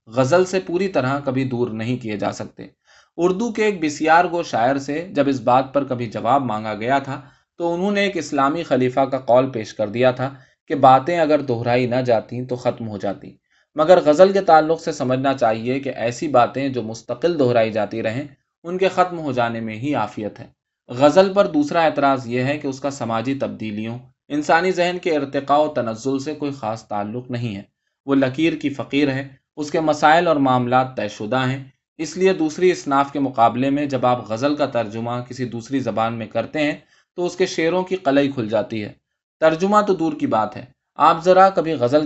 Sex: male